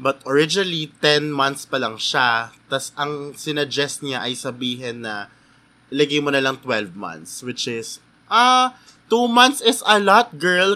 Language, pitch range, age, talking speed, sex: Filipino, 140-200 Hz, 20-39, 160 wpm, male